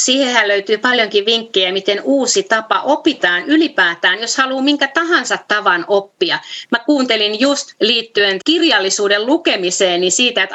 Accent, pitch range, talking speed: native, 195-270 Hz, 135 wpm